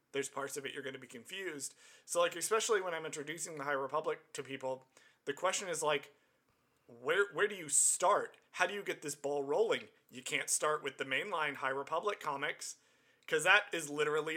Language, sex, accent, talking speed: English, male, American, 205 wpm